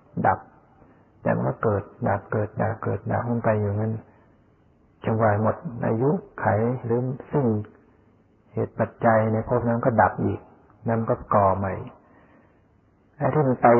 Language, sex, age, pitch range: Thai, male, 60-79, 105-120 Hz